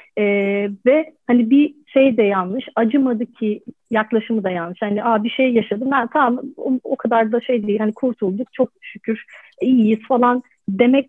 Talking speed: 175 wpm